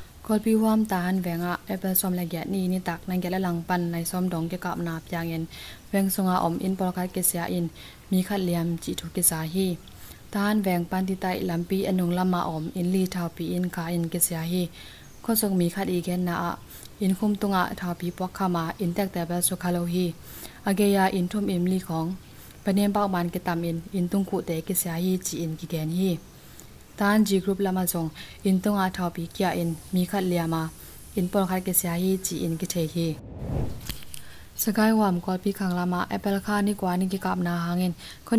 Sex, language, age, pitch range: female, English, 20-39, 175-190 Hz